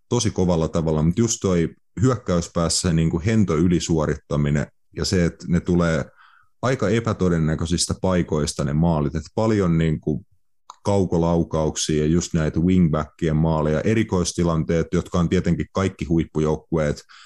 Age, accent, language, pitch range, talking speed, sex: 30-49, native, Finnish, 80-95 Hz, 125 wpm, male